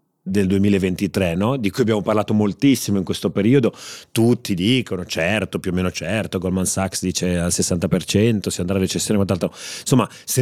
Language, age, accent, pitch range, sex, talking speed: Italian, 30-49, native, 95-125 Hz, male, 175 wpm